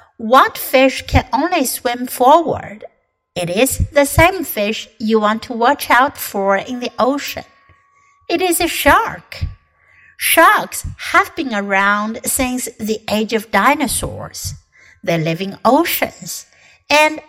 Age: 60-79